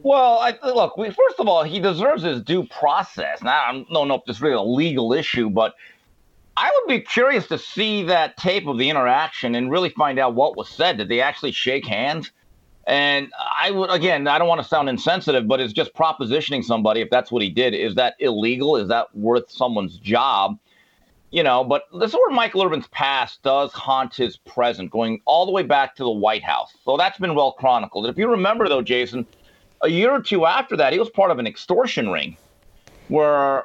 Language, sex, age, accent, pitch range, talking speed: English, male, 40-59, American, 135-200 Hz, 215 wpm